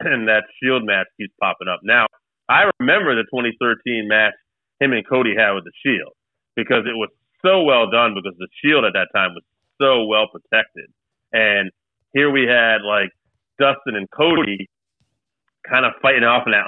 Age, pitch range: 30-49, 105-130 Hz